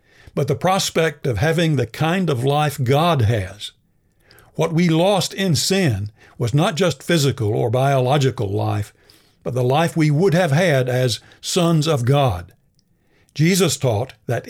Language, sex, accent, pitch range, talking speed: English, male, American, 120-160 Hz, 155 wpm